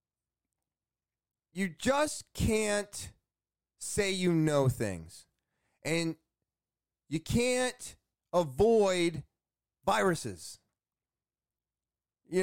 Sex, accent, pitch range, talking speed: male, American, 130-190 Hz, 65 wpm